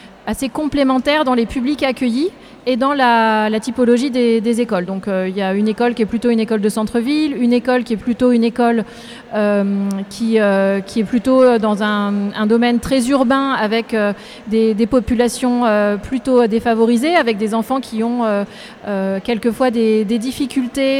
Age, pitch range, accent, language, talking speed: 30-49, 220-260 Hz, French, French, 190 wpm